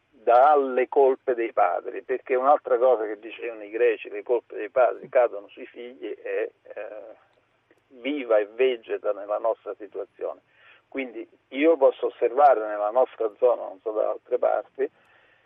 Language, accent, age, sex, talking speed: Italian, native, 50-69, male, 150 wpm